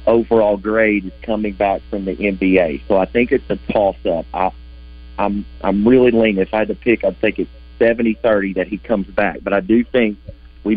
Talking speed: 195 wpm